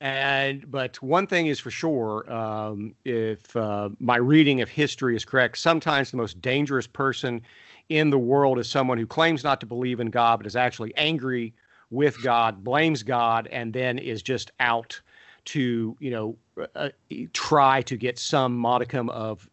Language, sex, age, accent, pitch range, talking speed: English, male, 50-69, American, 115-135 Hz, 170 wpm